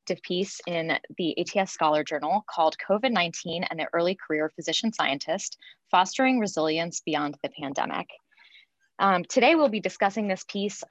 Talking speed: 145 wpm